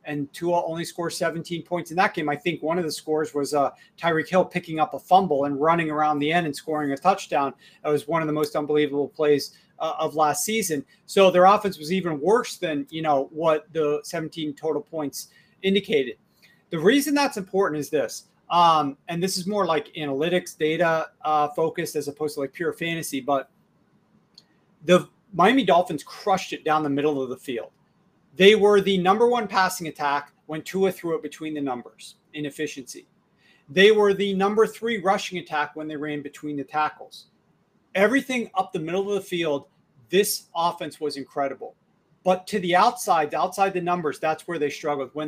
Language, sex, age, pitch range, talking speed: English, male, 40-59, 150-195 Hz, 190 wpm